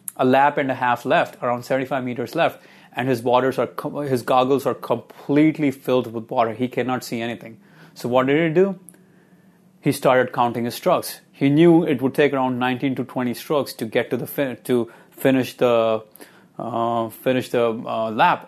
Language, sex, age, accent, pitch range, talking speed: English, male, 30-49, Indian, 120-150 Hz, 190 wpm